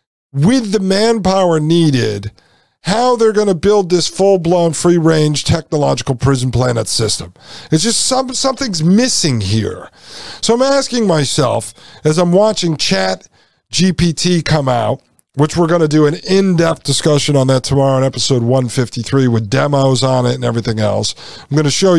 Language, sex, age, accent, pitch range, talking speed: English, male, 50-69, American, 135-195 Hz, 160 wpm